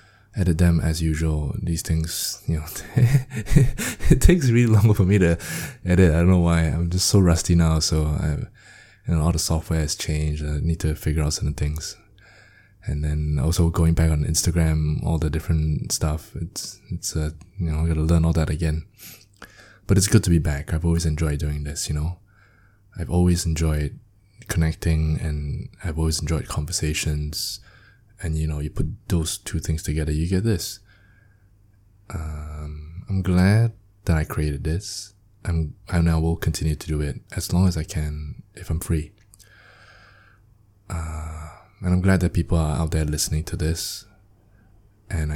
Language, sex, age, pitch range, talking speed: English, male, 20-39, 80-100 Hz, 175 wpm